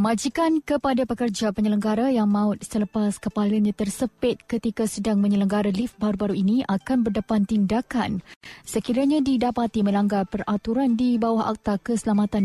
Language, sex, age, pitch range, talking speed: Malay, female, 20-39, 210-250 Hz, 125 wpm